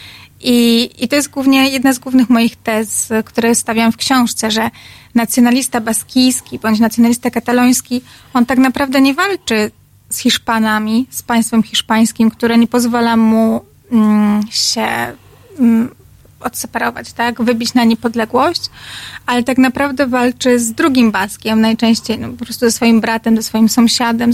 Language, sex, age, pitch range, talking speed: Polish, female, 30-49, 225-250 Hz, 135 wpm